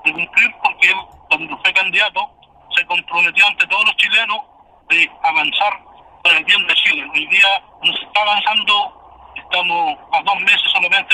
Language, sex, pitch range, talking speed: Spanish, male, 190-260 Hz, 155 wpm